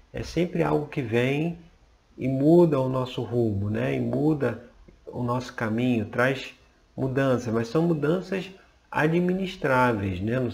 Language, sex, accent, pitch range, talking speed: Portuguese, male, Brazilian, 110-155 Hz, 135 wpm